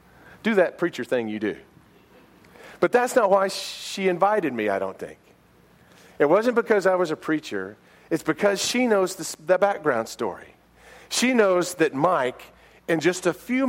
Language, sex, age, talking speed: English, male, 40-59, 165 wpm